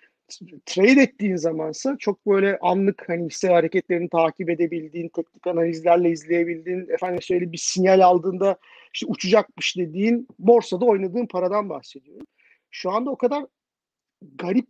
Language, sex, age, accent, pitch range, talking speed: Turkish, male, 50-69, native, 170-230 Hz, 125 wpm